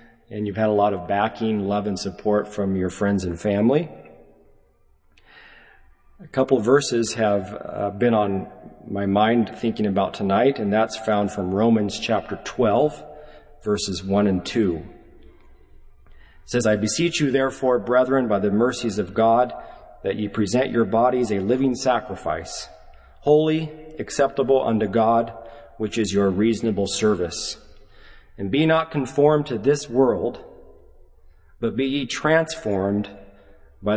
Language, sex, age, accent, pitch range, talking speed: English, male, 40-59, American, 95-125 Hz, 140 wpm